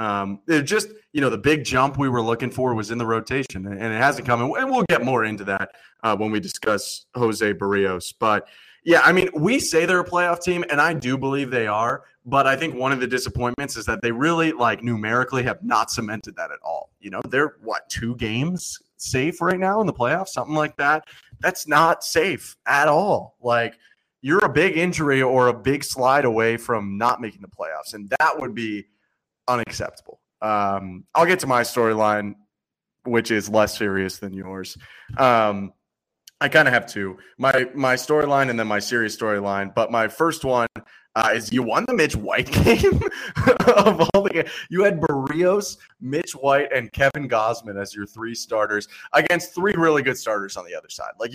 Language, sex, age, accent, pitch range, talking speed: English, male, 30-49, American, 110-145 Hz, 200 wpm